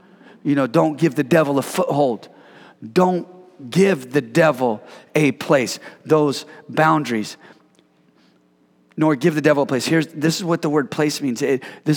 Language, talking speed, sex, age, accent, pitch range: English, 160 wpm, male, 40-59, American, 140-175 Hz